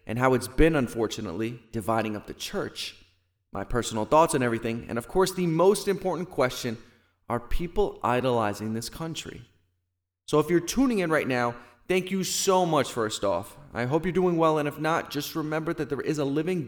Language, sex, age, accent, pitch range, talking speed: English, male, 20-39, American, 115-155 Hz, 195 wpm